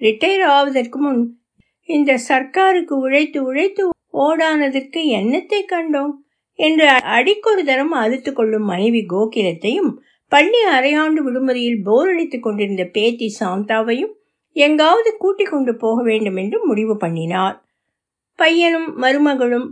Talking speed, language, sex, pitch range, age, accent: 45 wpm, Tamil, female, 220-310 Hz, 60-79, native